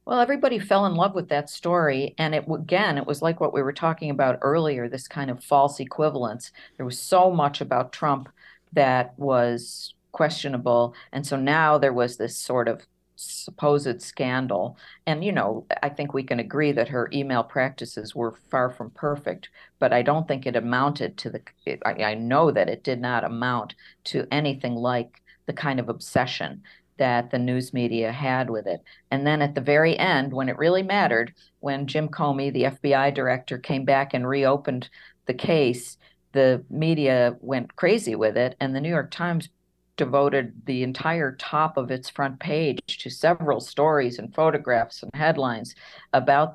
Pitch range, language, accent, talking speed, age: 125-155 Hz, English, American, 180 wpm, 50-69